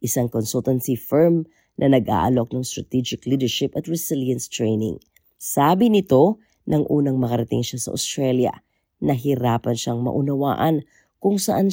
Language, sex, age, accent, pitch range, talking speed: Filipino, female, 40-59, native, 125-160 Hz, 125 wpm